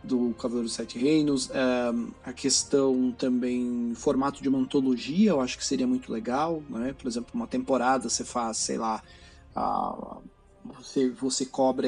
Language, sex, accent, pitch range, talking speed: Portuguese, male, Brazilian, 125-150 Hz, 165 wpm